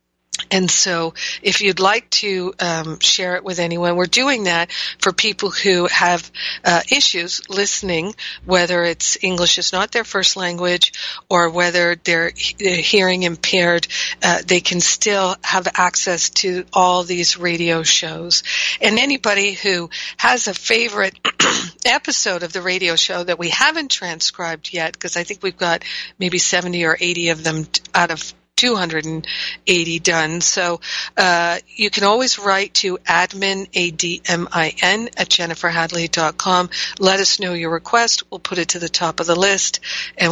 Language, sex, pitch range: English, female, 170-195 Hz